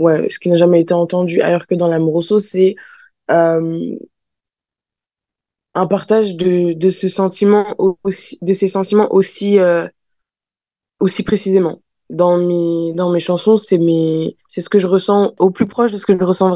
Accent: French